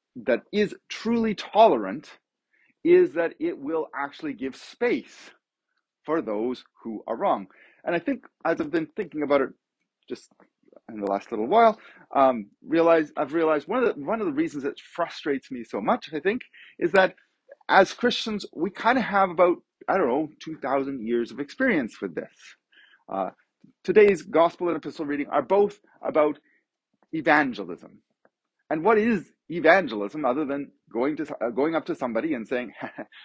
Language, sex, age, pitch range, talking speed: English, male, 40-59, 135-205 Hz, 170 wpm